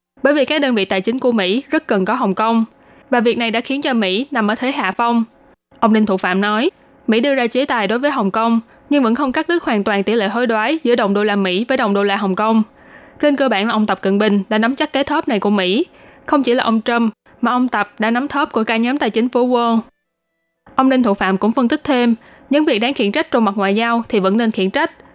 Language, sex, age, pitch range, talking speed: Vietnamese, female, 20-39, 205-265 Hz, 280 wpm